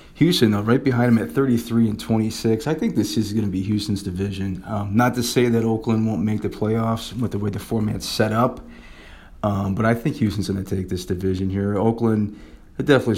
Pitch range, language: 100-120 Hz, English